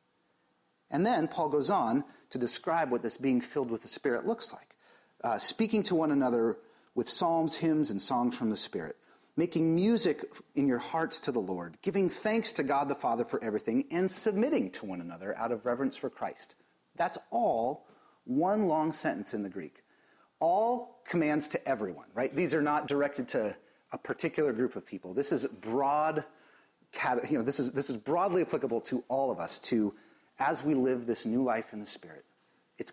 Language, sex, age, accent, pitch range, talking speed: English, male, 40-59, American, 115-190 Hz, 190 wpm